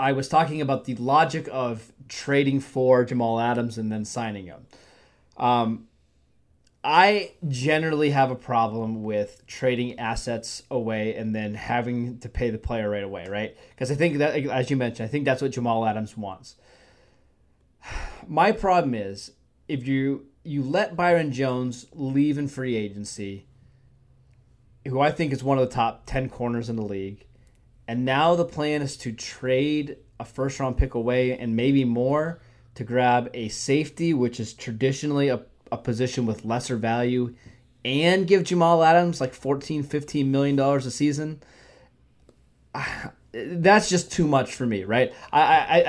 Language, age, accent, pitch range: English, 20-39, American, 115-140 Hz